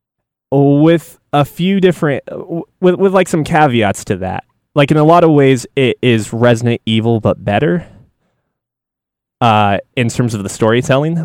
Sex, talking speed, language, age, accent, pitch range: male, 155 wpm, English, 20-39, American, 105-130 Hz